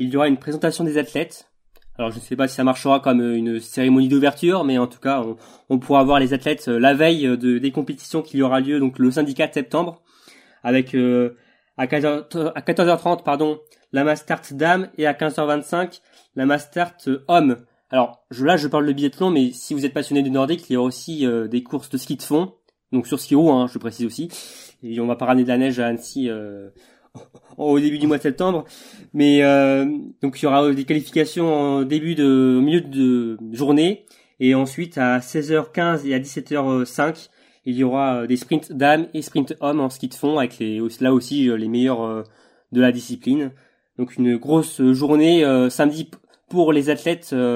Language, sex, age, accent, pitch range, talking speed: French, male, 20-39, French, 130-155 Hz, 200 wpm